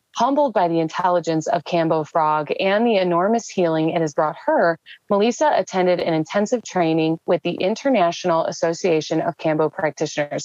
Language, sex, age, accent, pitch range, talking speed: English, female, 30-49, American, 165-205 Hz, 155 wpm